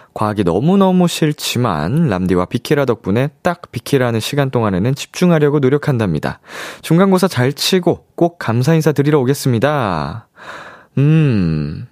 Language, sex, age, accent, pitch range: Korean, male, 20-39, native, 105-155 Hz